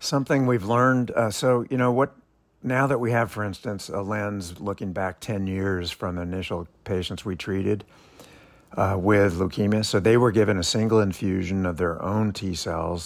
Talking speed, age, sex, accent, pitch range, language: 190 wpm, 60-79, male, American, 90-105 Hz, English